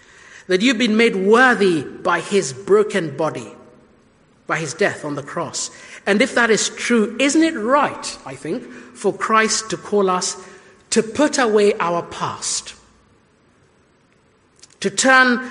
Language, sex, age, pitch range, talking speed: English, male, 50-69, 180-220 Hz, 145 wpm